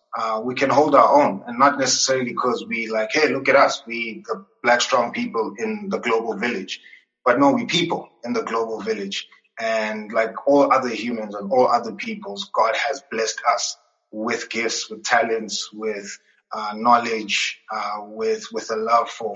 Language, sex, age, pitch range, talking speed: English, male, 20-39, 110-140 Hz, 185 wpm